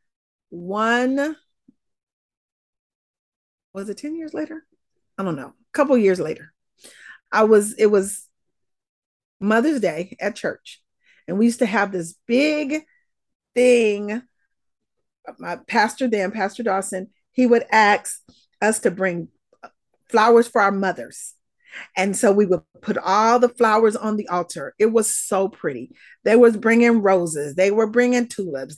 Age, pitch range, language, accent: 40-59, 210-280 Hz, English, American